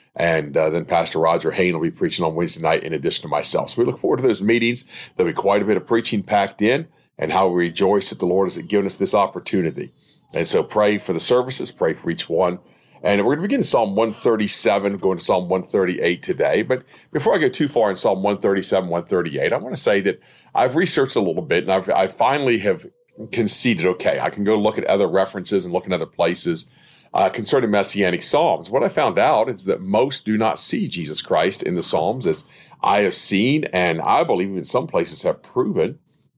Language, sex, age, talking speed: English, male, 40-59, 225 wpm